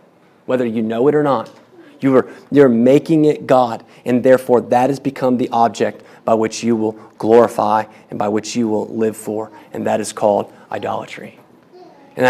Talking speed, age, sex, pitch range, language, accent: 170 wpm, 30-49, male, 125-155 Hz, English, American